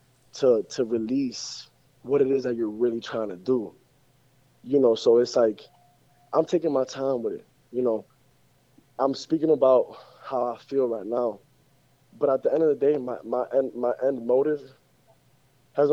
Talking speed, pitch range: 175 wpm, 130-155 Hz